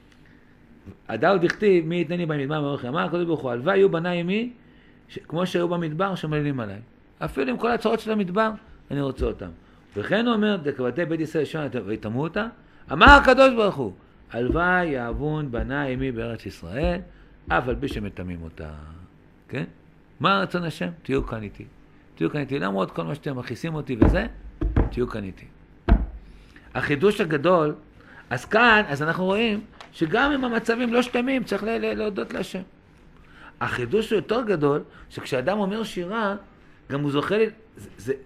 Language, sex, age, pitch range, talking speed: Hebrew, male, 50-69, 135-210 Hz, 145 wpm